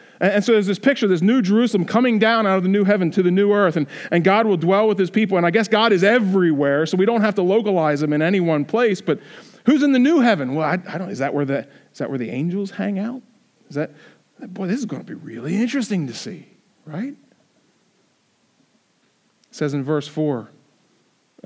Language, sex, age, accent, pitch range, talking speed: English, male, 40-59, American, 135-200 Hz, 225 wpm